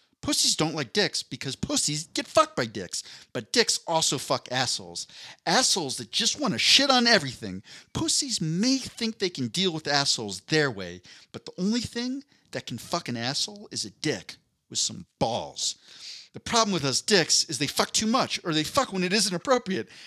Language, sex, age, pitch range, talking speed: English, male, 40-59, 125-200 Hz, 195 wpm